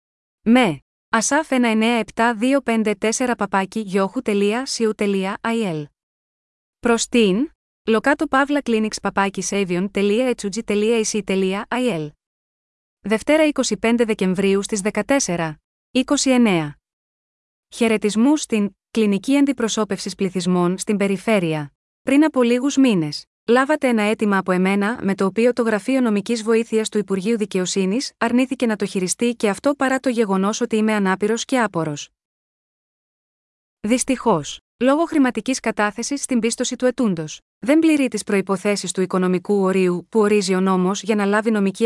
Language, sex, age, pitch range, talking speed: Greek, female, 20-39, 195-245 Hz, 120 wpm